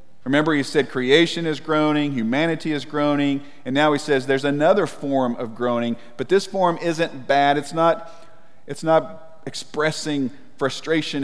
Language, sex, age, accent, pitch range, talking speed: English, male, 40-59, American, 125-160 Hz, 150 wpm